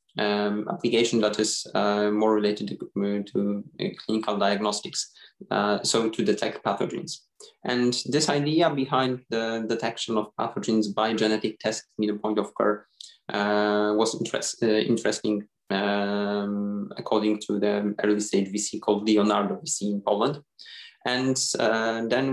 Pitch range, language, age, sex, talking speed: 105-115 Hz, English, 20-39, male, 135 wpm